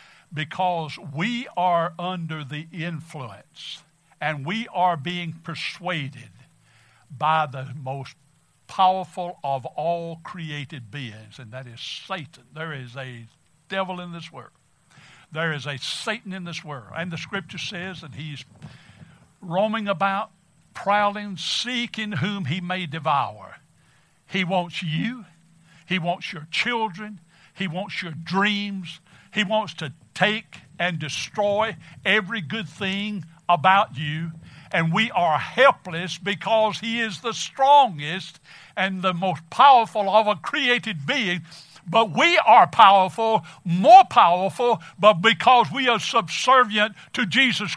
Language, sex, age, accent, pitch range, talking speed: English, male, 60-79, American, 155-205 Hz, 130 wpm